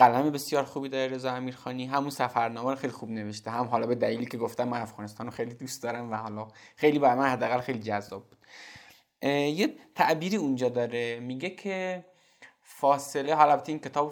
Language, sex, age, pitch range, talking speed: Persian, male, 20-39, 115-170 Hz, 180 wpm